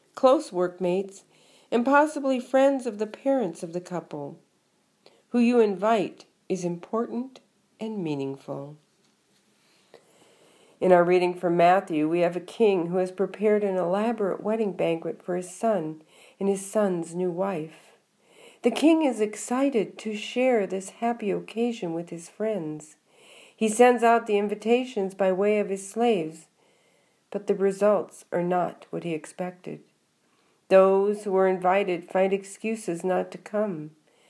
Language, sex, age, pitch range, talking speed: English, female, 50-69, 175-225 Hz, 140 wpm